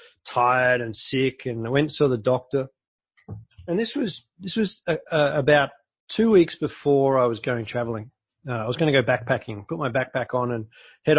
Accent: Australian